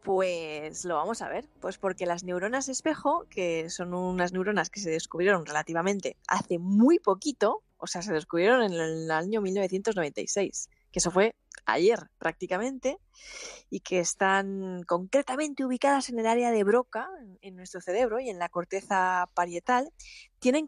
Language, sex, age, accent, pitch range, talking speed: Spanish, female, 20-39, Spanish, 185-240 Hz, 155 wpm